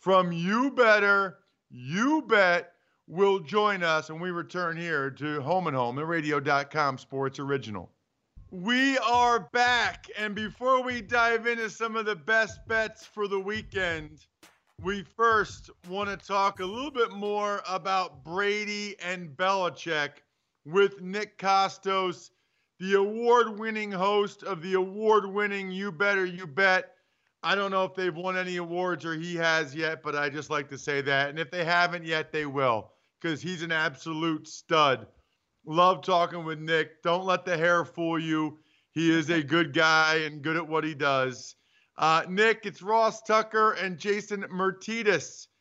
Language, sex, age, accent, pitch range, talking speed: English, male, 40-59, American, 160-205 Hz, 165 wpm